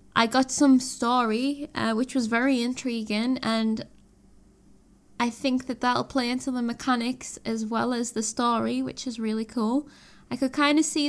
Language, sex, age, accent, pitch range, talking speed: English, female, 10-29, British, 225-260 Hz, 175 wpm